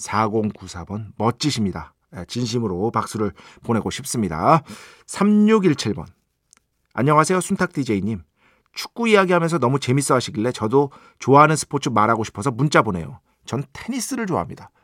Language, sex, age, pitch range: Korean, male, 40-59, 115-195 Hz